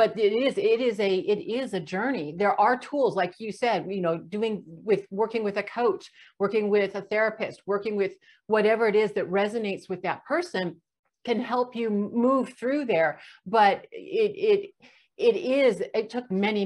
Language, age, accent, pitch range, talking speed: English, 50-69, American, 185-230 Hz, 185 wpm